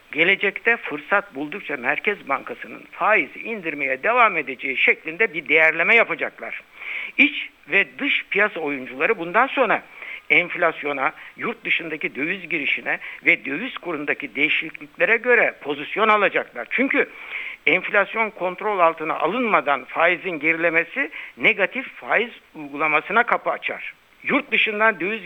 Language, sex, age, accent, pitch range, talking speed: Turkish, male, 60-79, native, 150-215 Hz, 110 wpm